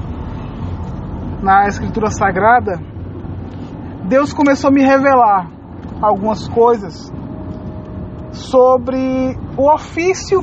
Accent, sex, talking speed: Brazilian, male, 75 wpm